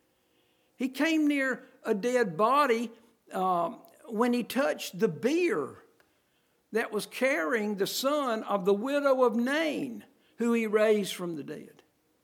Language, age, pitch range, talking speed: English, 60-79, 195-255 Hz, 135 wpm